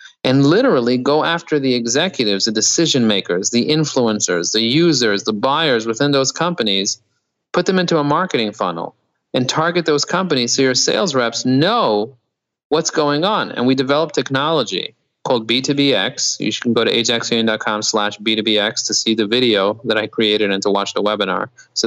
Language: English